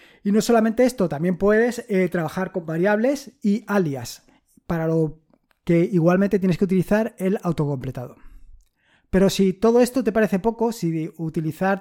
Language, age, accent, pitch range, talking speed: Spanish, 20-39, Spanish, 160-205 Hz, 150 wpm